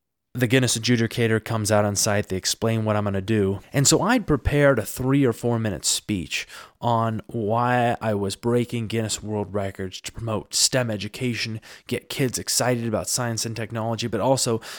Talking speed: 185 wpm